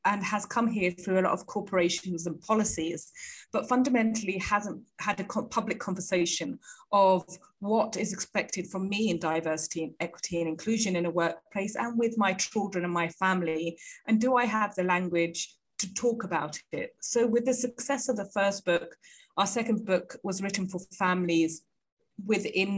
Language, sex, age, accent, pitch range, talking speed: English, female, 20-39, British, 175-220 Hz, 175 wpm